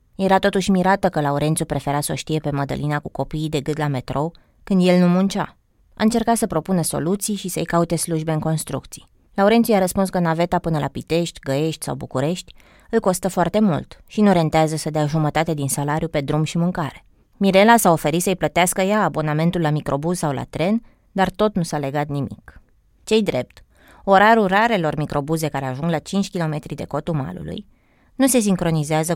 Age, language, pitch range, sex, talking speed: 20-39, Romanian, 150-195 Hz, female, 190 wpm